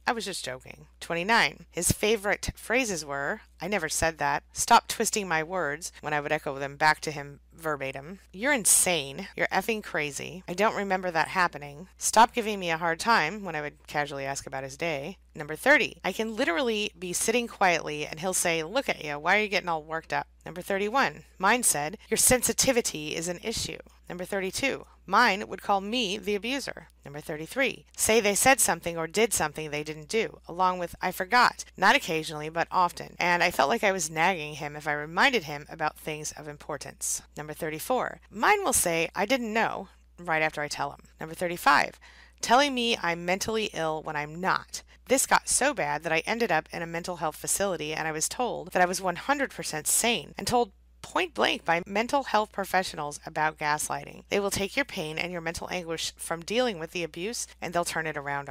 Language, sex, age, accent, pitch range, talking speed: English, female, 30-49, American, 155-215 Hz, 200 wpm